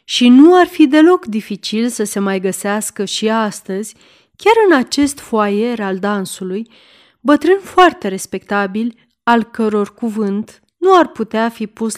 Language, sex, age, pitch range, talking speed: Romanian, female, 30-49, 205-275 Hz, 145 wpm